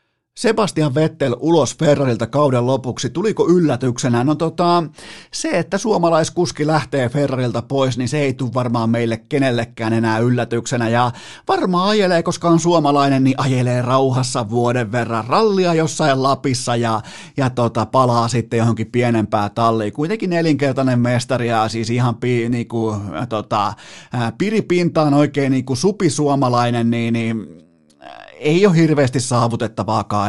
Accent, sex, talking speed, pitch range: native, male, 130 wpm, 115-150 Hz